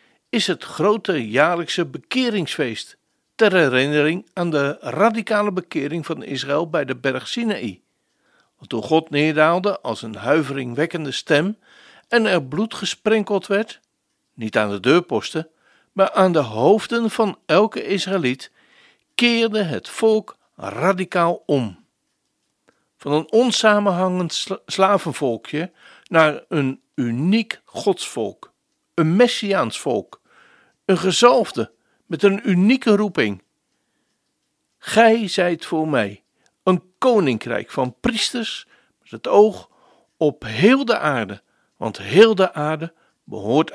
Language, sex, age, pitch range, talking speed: Dutch, male, 60-79, 145-210 Hz, 115 wpm